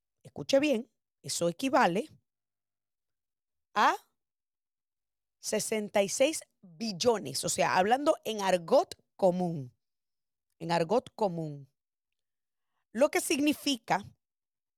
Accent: American